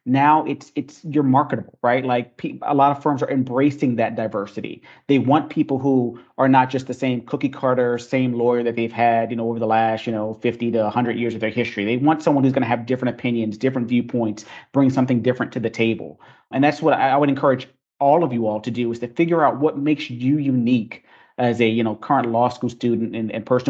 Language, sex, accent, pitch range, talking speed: English, male, American, 120-140 Hz, 240 wpm